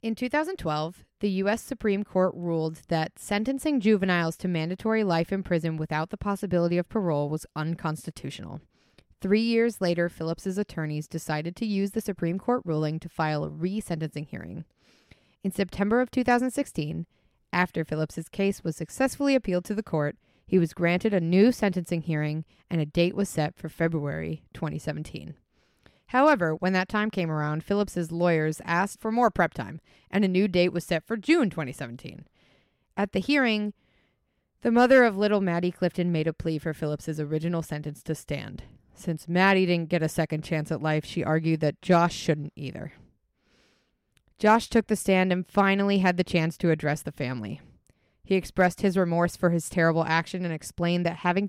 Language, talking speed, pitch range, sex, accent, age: English, 170 wpm, 160-200 Hz, female, American, 20-39